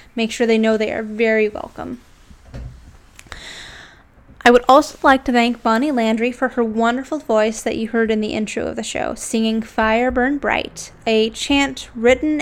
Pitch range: 225-270 Hz